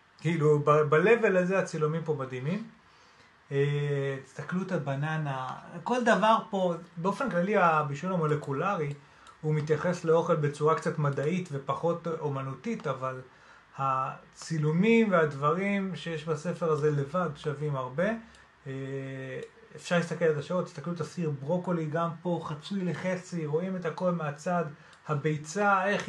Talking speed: 130 wpm